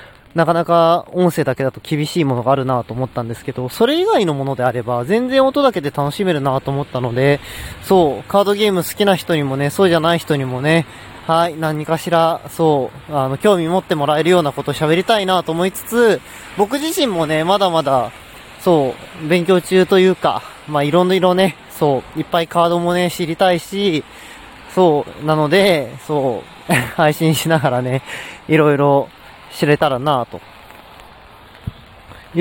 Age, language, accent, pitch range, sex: 20-39, Japanese, native, 135-175 Hz, male